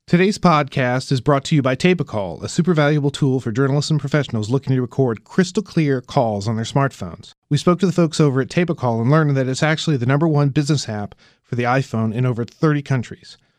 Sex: male